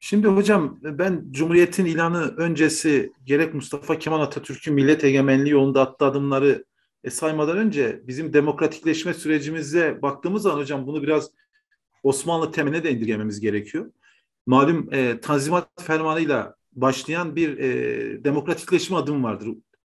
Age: 40-59